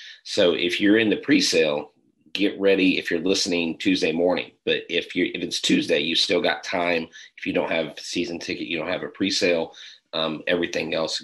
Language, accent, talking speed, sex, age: English, American, 205 wpm, male, 30-49